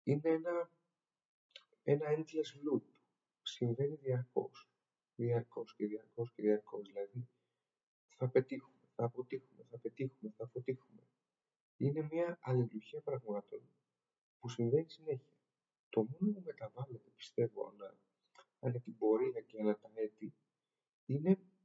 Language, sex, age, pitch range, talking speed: Greek, male, 50-69, 115-160 Hz, 115 wpm